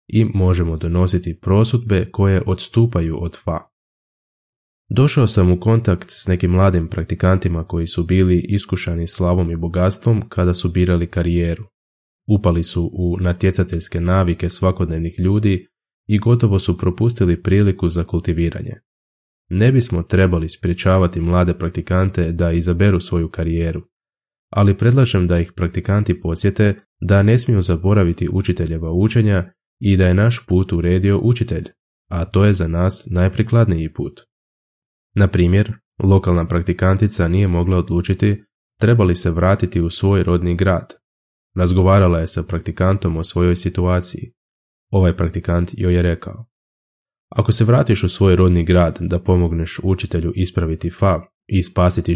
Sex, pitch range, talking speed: male, 85-100 Hz, 135 wpm